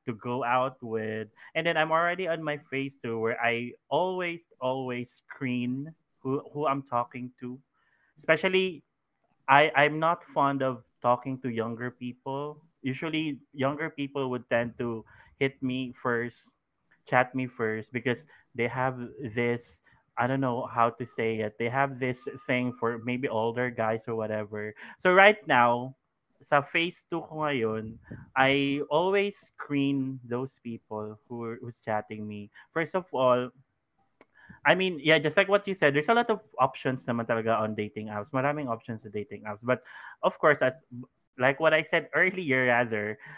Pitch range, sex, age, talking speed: 115-150 Hz, male, 20-39, 165 wpm